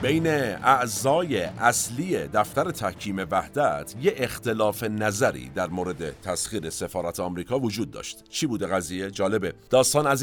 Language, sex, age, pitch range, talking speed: Persian, male, 50-69, 85-110 Hz, 130 wpm